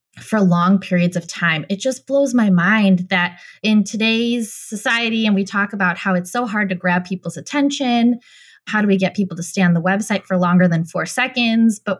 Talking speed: 210 wpm